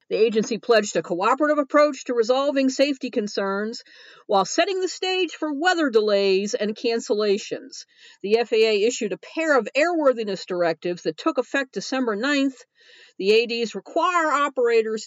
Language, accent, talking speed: English, American, 145 wpm